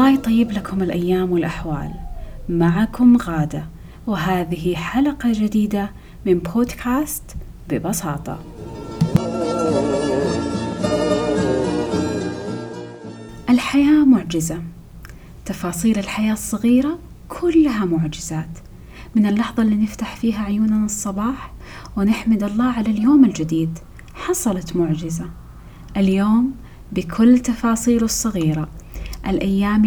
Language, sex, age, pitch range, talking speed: Arabic, female, 30-49, 175-235 Hz, 80 wpm